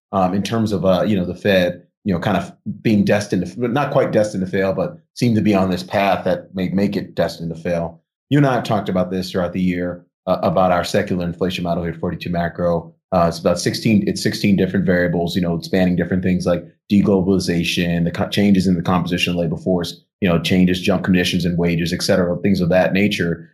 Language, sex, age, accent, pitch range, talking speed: English, male, 30-49, American, 85-100 Hz, 235 wpm